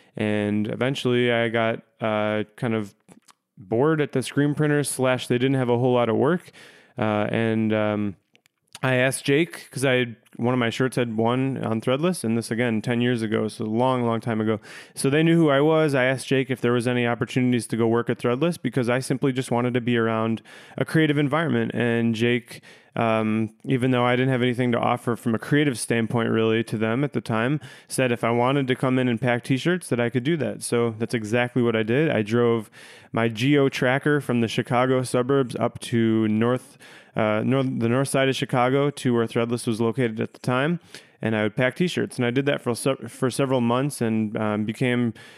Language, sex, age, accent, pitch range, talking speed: English, male, 30-49, American, 115-130 Hz, 220 wpm